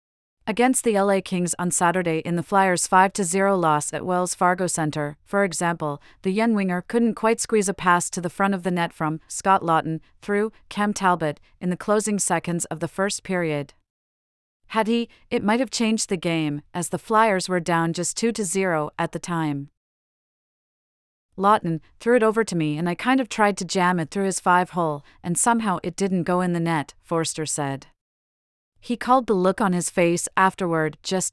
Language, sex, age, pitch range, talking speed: English, female, 40-59, 165-200 Hz, 195 wpm